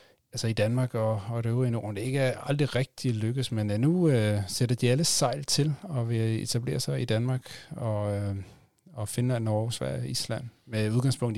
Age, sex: 30-49, male